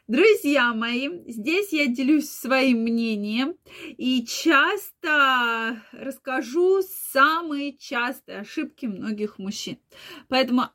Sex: female